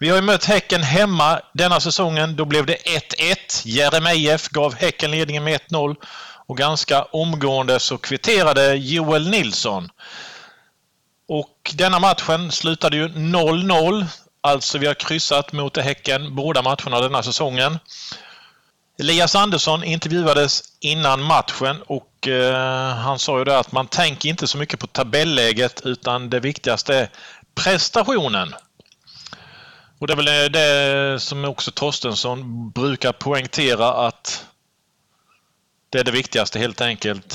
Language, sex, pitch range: Swedish, male, 135-160 Hz